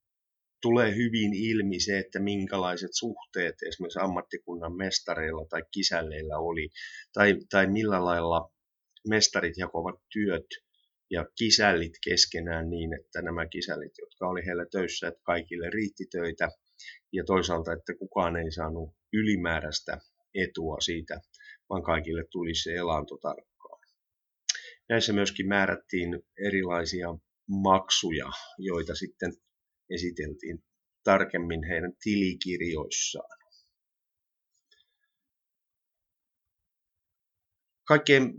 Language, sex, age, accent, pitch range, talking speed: Finnish, male, 30-49, native, 85-105 Hz, 95 wpm